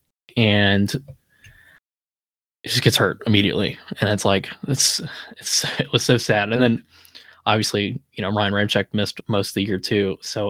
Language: English